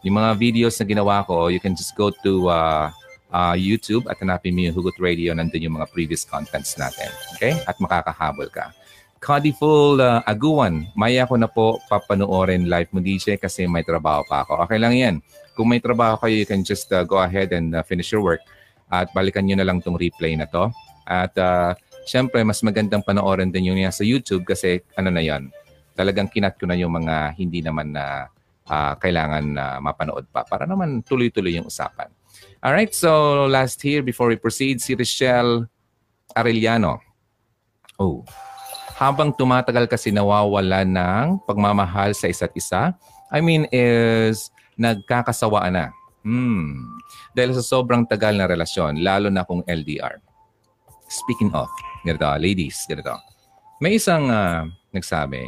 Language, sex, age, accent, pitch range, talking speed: Filipino, male, 30-49, native, 90-120 Hz, 165 wpm